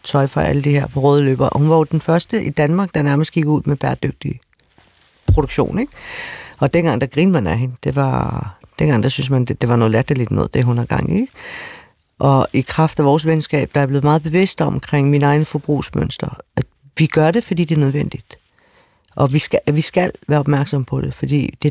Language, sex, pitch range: Danish, female, 140-165 Hz